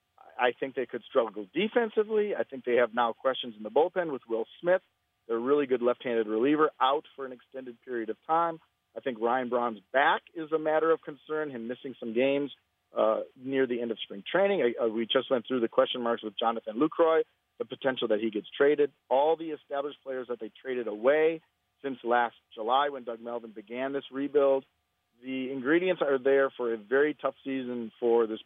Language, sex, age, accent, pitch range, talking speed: English, male, 40-59, American, 115-145 Hz, 205 wpm